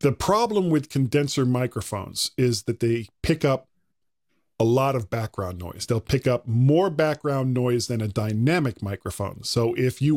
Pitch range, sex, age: 120-150 Hz, male, 40-59